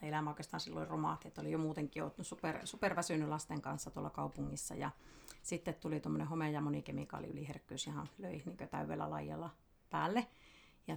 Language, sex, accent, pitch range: Finnish, female, native, 145-165 Hz